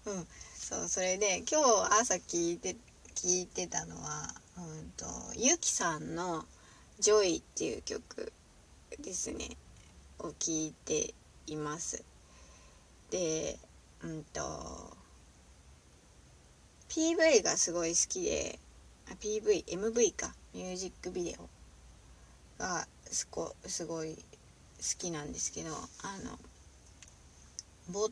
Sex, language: female, Japanese